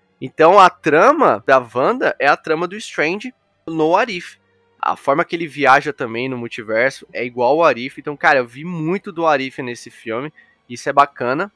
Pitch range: 120-150 Hz